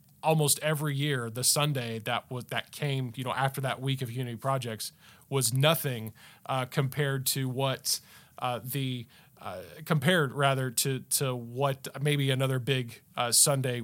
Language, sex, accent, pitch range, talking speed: English, male, American, 130-150 Hz, 155 wpm